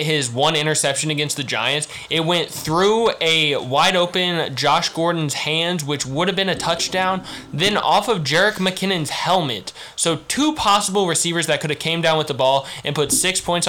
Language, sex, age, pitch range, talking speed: English, male, 10-29, 145-170 Hz, 190 wpm